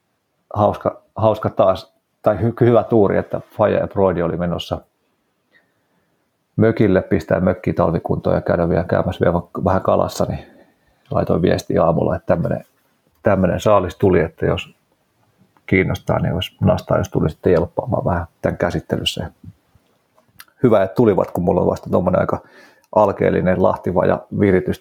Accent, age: native, 30-49